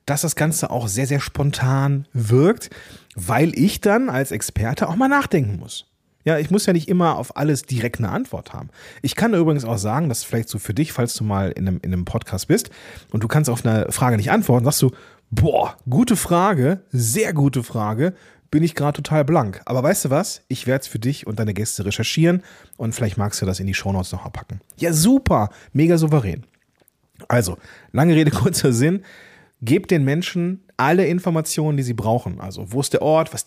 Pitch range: 115-150 Hz